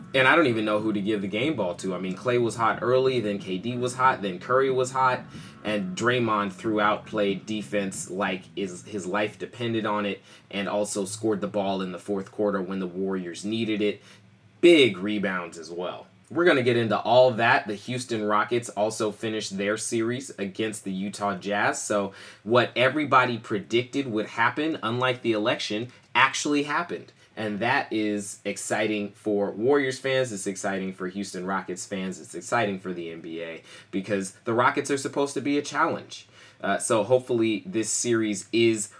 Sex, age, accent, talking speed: male, 20-39, American, 180 wpm